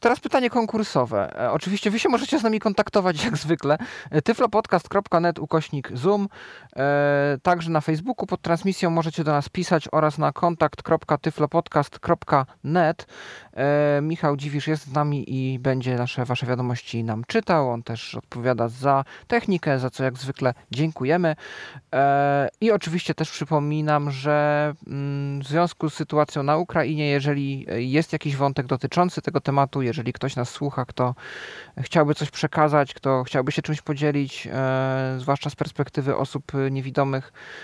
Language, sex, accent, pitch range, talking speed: Polish, male, native, 135-175 Hz, 135 wpm